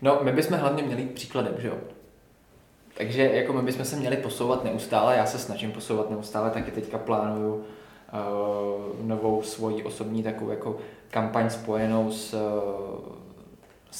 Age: 20-39